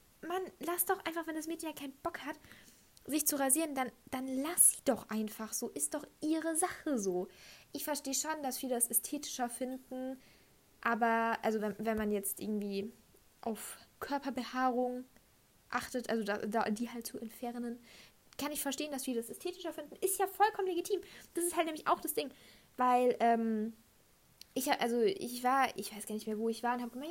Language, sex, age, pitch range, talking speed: German, female, 10-29, 225-290 Hz, 195 wpm